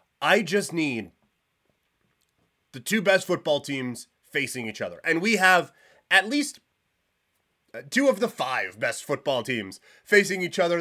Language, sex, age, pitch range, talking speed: English, male, 30-49, 140-180 Hz, 145 wpm